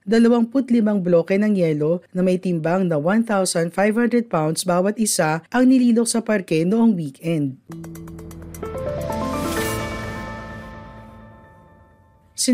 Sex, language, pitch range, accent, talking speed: female, Filipino, 155-215 Hz, native, 95 wpm